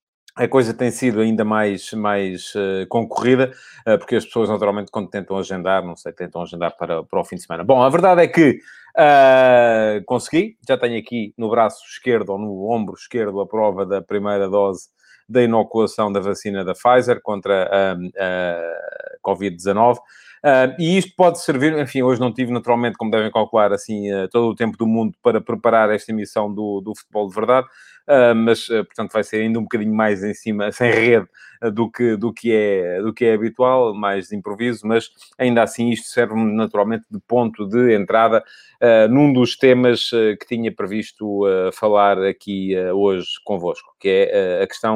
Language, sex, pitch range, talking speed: Portuguese, male, 105-125 Hz, 185 wpm